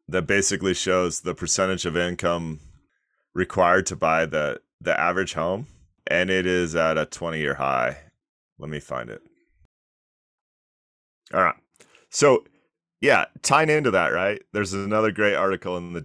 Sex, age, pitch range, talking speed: male, 30-49, 85-100 Hz, 145 wpm